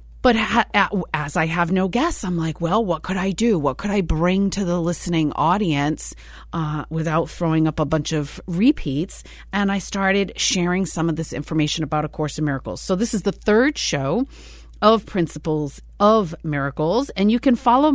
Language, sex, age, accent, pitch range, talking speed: English, female, 30-49, American, 160-215 Hz, 185 wpm